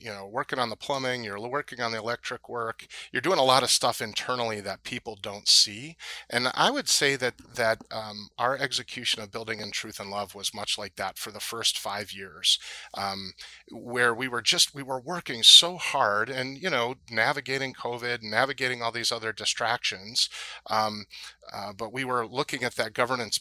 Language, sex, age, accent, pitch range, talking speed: English, male, 30-49, American, 105-130 Hz, 195 wpm